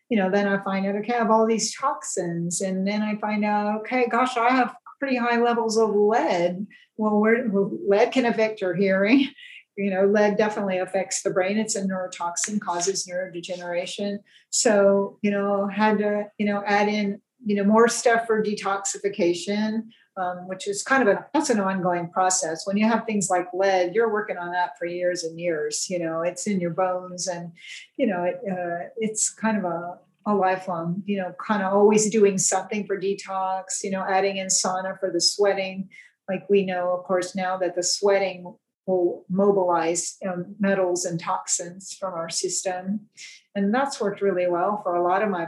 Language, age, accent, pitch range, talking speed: English, 50-69, American, 185-215 Hz, 185 wpm